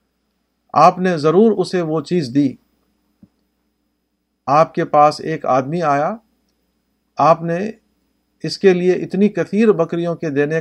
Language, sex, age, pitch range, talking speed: Urdu, male, 50-69, 145-185 Hz, 130 wpm